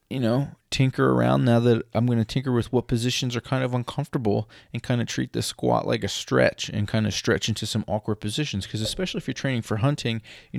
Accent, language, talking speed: American, English, 240 wpm